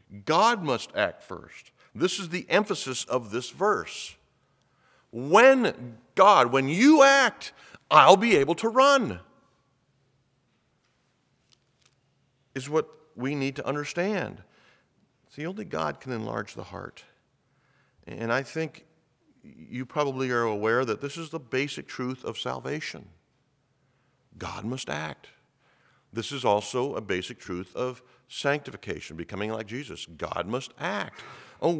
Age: 50-69